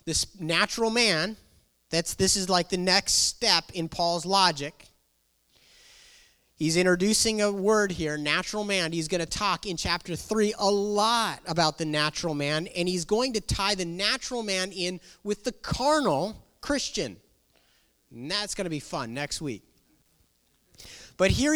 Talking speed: 155 wpm